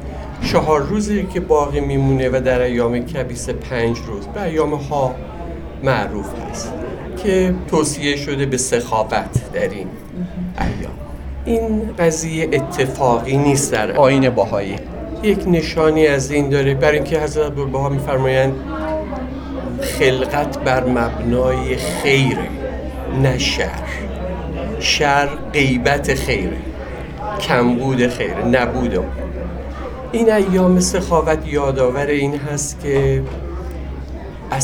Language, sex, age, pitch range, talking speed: Persian, male, 50-69, 100-155 Hz, 100 wpm